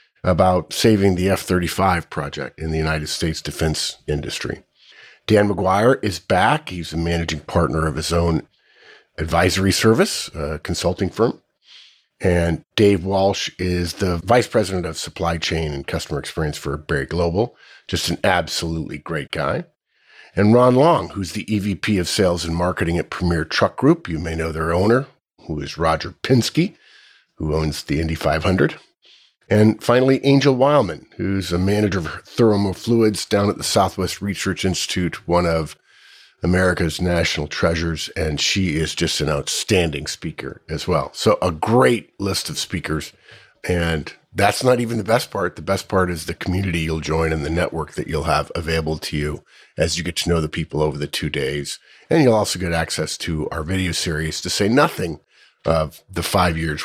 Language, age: English, 50-69